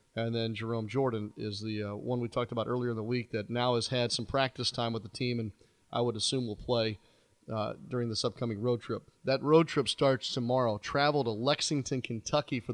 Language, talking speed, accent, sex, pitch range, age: English, 220 wpm, American, male, 110-135 Hz, 30-49